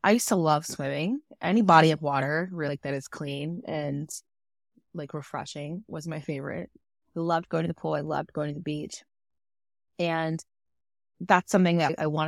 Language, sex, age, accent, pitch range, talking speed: English, female, 20-39, American, 150-190 Hz, 175 wpm